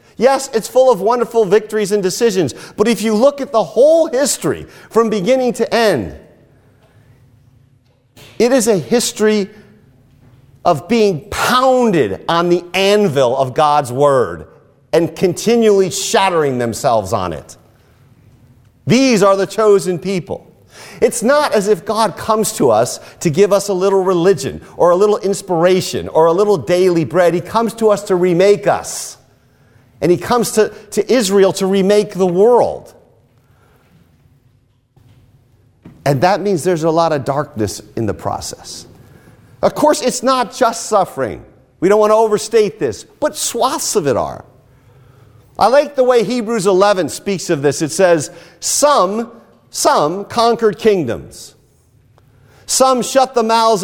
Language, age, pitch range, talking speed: English, 40-59, 130-220 Hz, 145 wpm